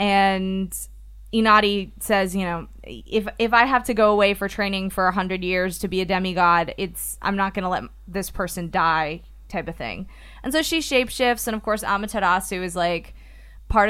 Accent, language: American, English